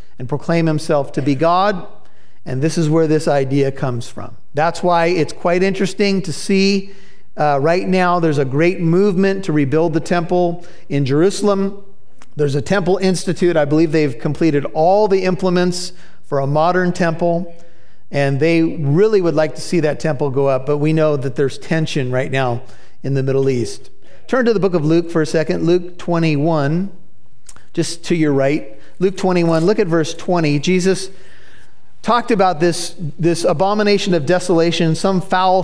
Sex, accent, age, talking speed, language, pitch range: male, American, 50-69, 175 wpm, English, 145-180 Hz